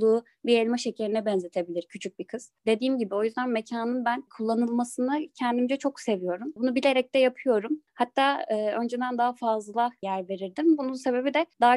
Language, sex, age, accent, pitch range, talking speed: Turkish, female, 20-39, native, 200-255 Hz, 165 wpm